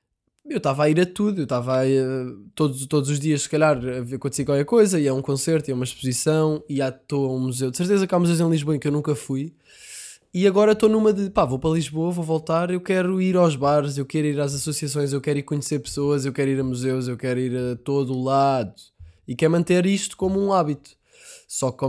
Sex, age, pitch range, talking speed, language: male, 20-39, 130-160 Hz, 245 wpm, Portuguese